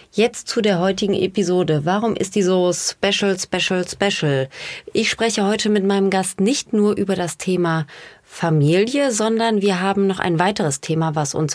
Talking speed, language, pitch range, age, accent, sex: 170 wpm, German, 175-210 Hz, 30-49, German, female